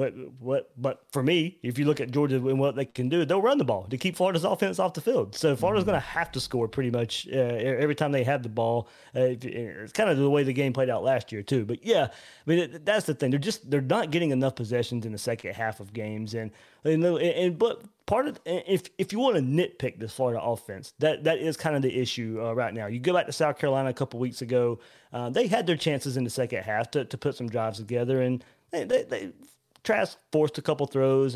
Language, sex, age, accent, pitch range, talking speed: English, male, 30-49, American, 125-155 Hz, 260 wpm